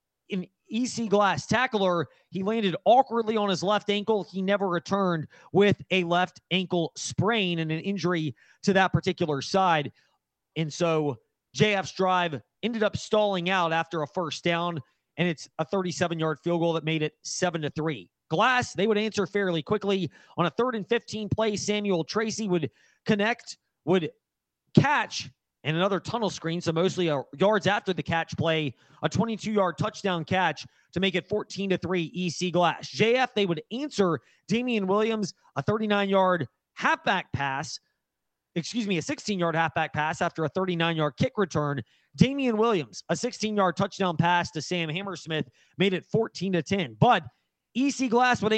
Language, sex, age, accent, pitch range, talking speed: English, male, 30-49, American, 165-210 Hz, 165 wpm